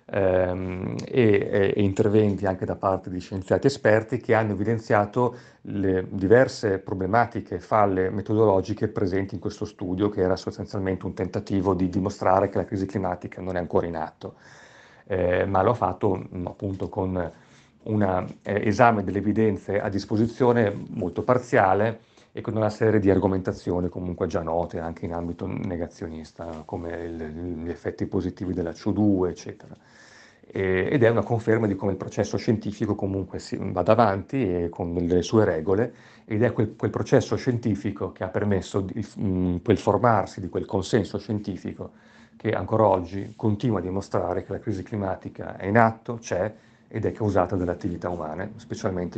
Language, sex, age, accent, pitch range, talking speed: Italian, male, 40-59, native, 95-110 Hz, 155 wpm